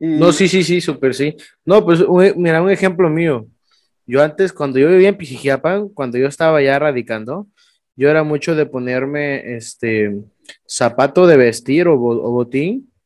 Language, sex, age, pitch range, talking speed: Spanish, male, 20-39, 140-180 Hz, 170 wpm